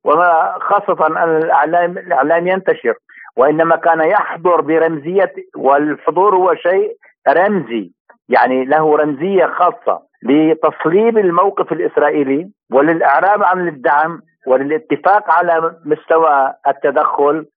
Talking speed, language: 90 wpm, Arabic